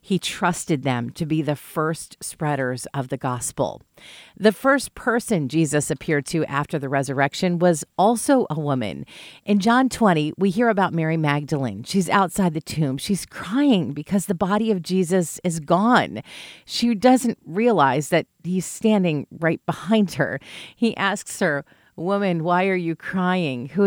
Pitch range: 145-195 Hz